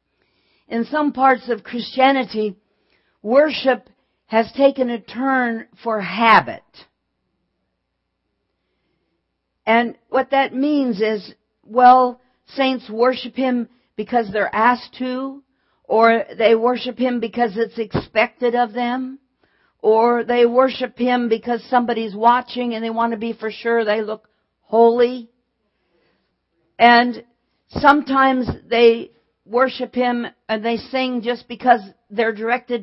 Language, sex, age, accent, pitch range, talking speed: English, female, 50-69, American, 230-260 Hz, 115 wpm